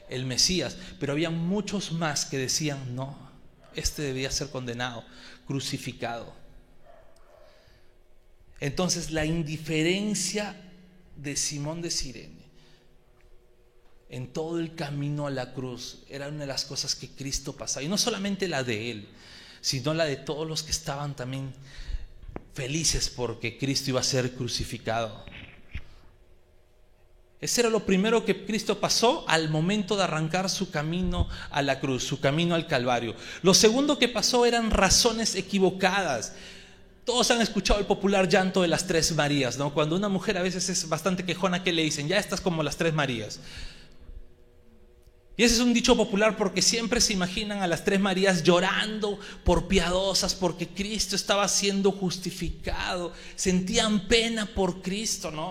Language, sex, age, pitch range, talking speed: Spanish, male, 40-59, 135-195 Hz, 150 wpm